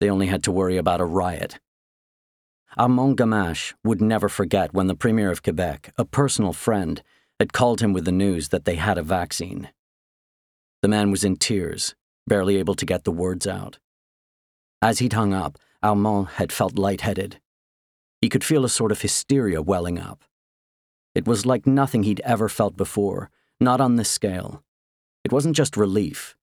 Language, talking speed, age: English, 175 wpm, 40-59